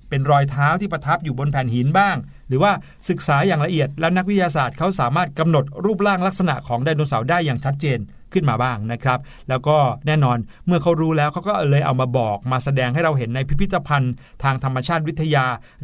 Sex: male